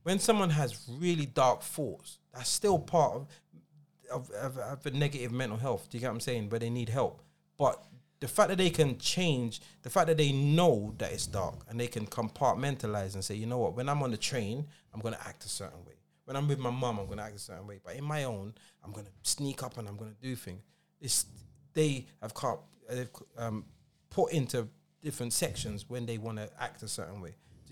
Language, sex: English, male